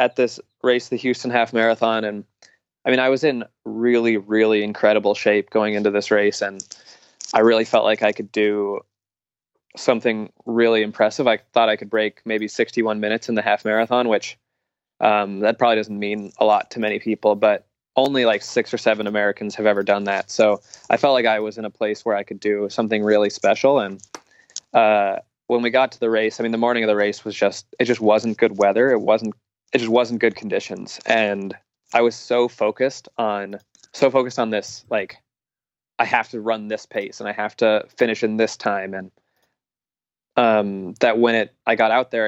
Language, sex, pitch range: English, male, 105-115 Hz